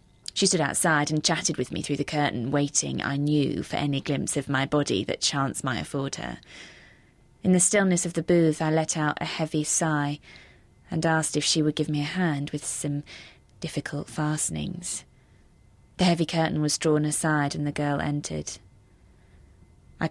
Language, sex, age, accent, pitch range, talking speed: English, female, 20-39, British, 140-160 Hz, 180 wpm